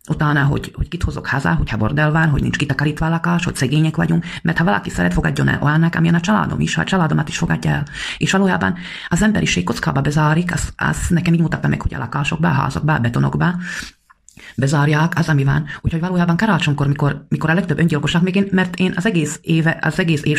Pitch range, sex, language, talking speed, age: 145-170 Hz, female, English, 220 wpm, 30-49